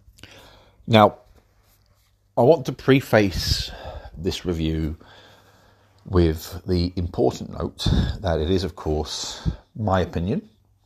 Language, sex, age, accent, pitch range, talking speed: English, male, 40-59, British, 85-100 Hz, 100 wpm